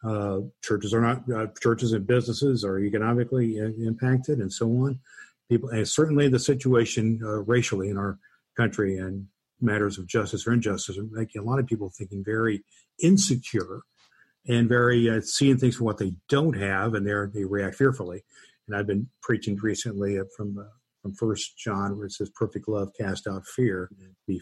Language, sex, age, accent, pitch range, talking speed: English, male, 50-69, American, 105-130 Hz, 180 wpm